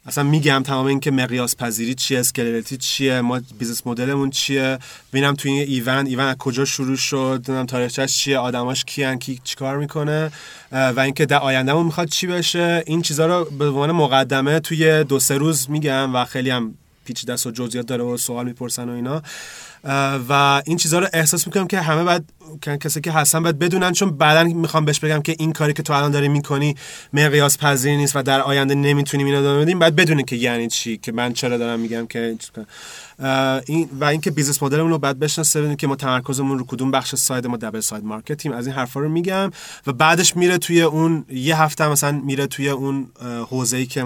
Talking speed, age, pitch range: 200 wpm, 30-49, 125-155 Hz